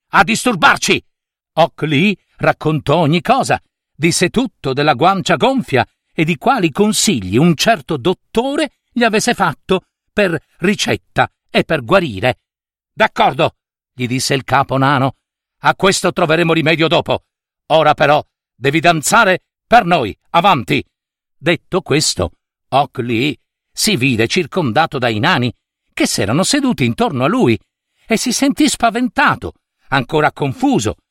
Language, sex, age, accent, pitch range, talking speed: Italian, male, 50-69, native, 150-215 Hz, 125 wpm